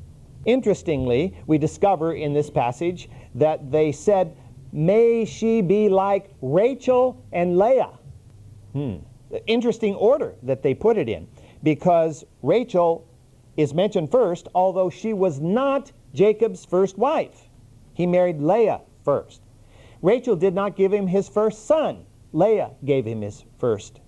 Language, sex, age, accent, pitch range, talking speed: English, male, 50-69, American, 125-185 Hz, 130 wpm